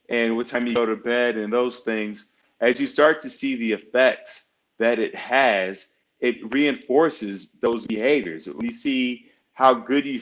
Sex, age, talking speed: male, 30-49, 175 wpm